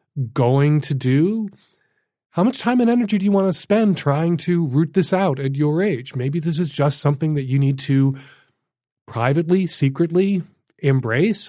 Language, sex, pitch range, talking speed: English, male, 130-160 Hz, 170 wpm